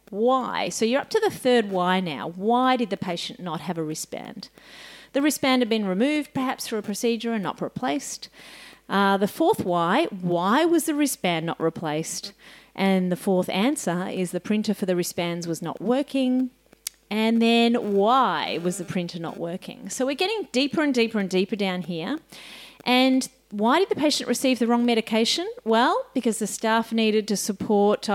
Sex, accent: female, Australian